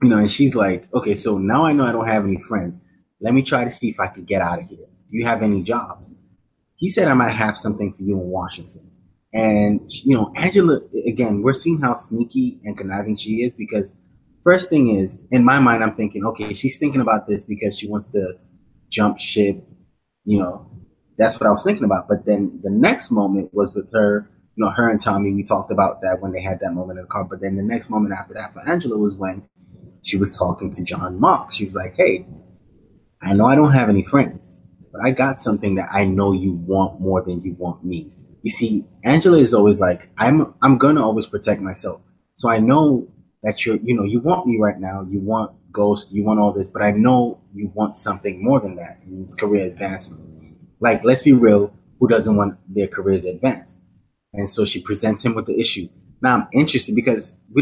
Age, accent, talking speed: 20-39, American, 230 wpm